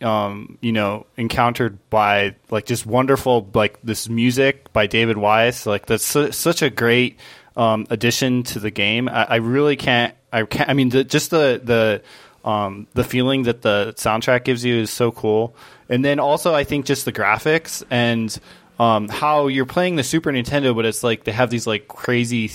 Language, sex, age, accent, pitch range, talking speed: English, male, 20-39, American, 110-125 Hz, 190 wpm